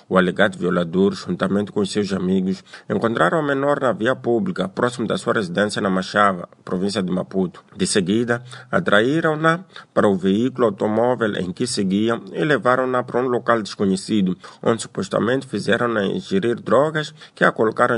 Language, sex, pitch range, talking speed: Portuguese, male, 100-130 Hz, 155 wpm